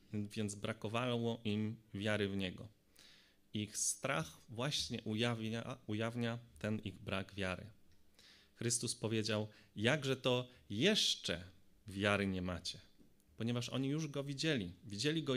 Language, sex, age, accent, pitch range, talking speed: Polish, male, 30-49, native, 100-130 Hz, 115 wpm